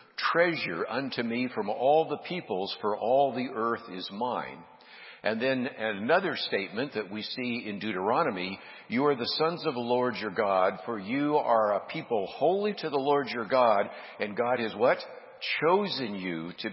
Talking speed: 175 wpm